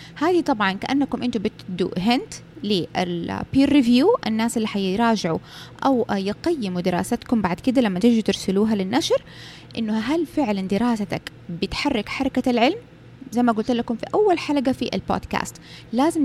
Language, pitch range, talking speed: Arabic, 200-270 Hz, 135 wpm